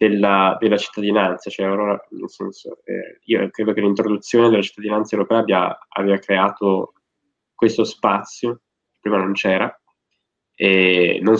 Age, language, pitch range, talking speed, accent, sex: 20-39, Italian, 90-105 Hz, 135 wpm, native, male